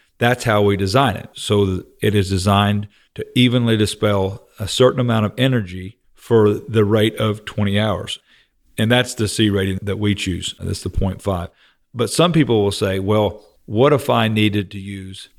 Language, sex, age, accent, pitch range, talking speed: English, male, 40-59, American, 95-115 Hz, 180 wpm